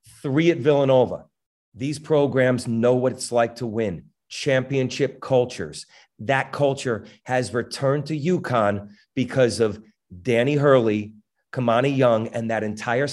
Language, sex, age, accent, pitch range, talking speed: English, male, 40-59, American, 120-160 Hz, 130 wpm